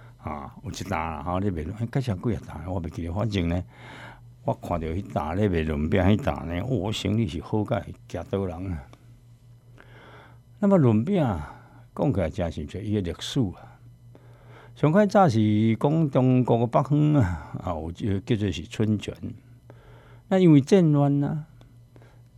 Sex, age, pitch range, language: male, 60-79, 100-130 Hz, Chinese